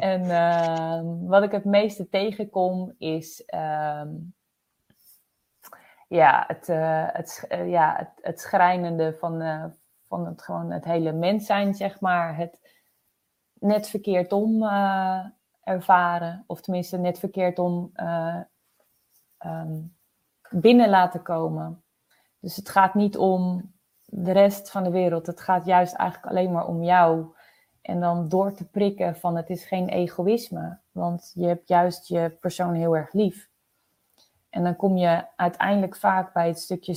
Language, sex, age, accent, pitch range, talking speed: Dutch, female, 20-39, Dutch, 170-190 Hz, 130 wpm